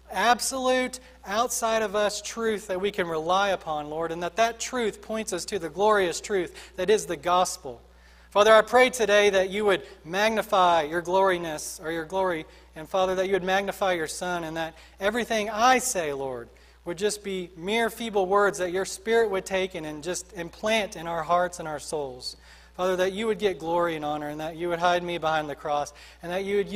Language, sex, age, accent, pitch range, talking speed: English, male, 40-59, American, 150-210 Hz, 210 wpm